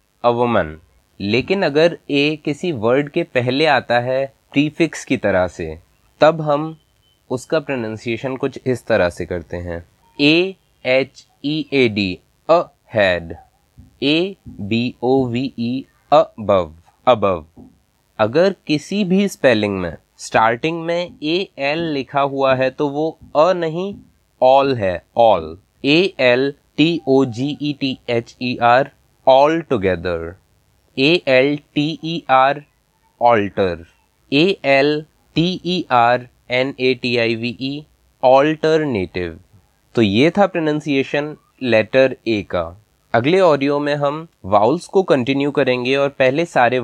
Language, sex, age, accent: English, male, 20-39, Indian